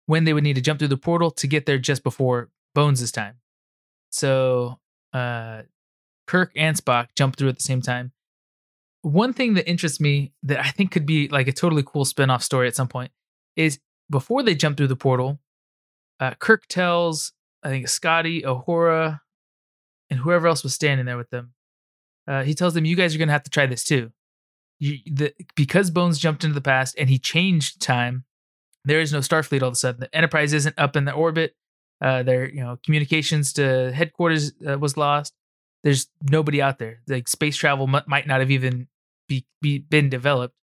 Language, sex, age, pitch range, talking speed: English, male, 20-39, 130-155 Hz, 195 wpm